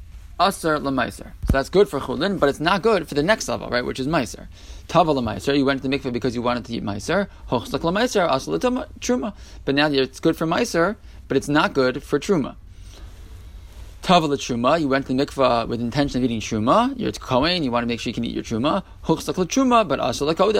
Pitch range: 120-155 Hz